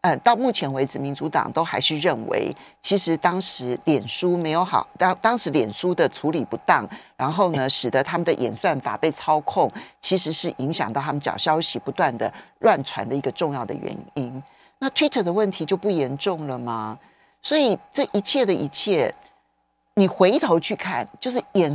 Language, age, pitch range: Chinese, 40-59, 150-245 Hz